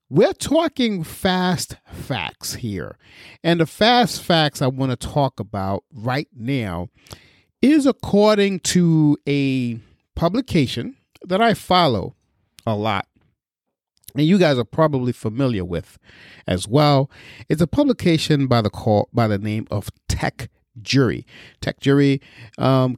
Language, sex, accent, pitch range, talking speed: English, male, American, 115-155 Hz, 130 wpm